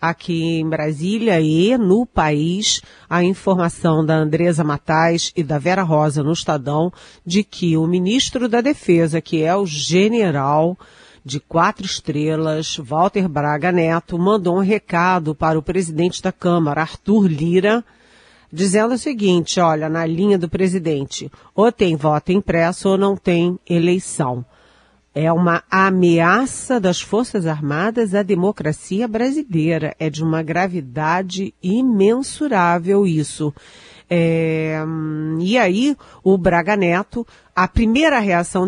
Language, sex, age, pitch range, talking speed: Portuguese, female, 40-59, 160-200 Hz, 125 wpm